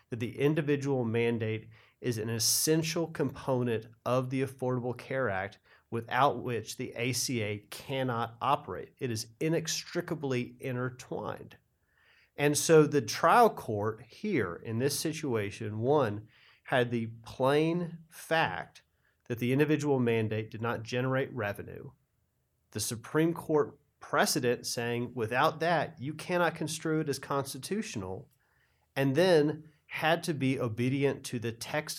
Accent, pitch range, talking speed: American, 110-140 Hz, 125 wpm